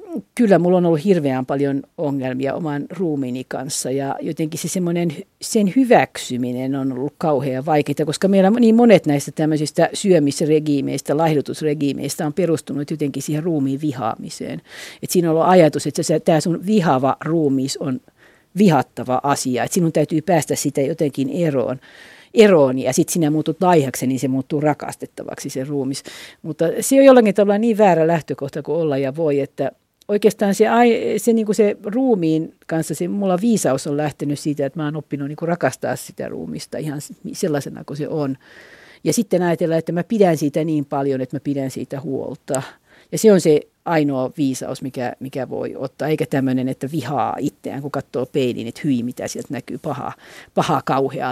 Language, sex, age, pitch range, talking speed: Finnish, female, 50-69, 140-180 Hz, 165 wpm